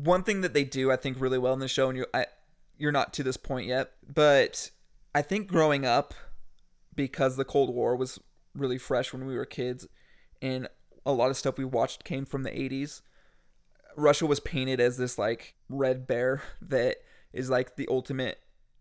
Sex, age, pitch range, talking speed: male, 20-39, 130-155 Hz, 190 wpm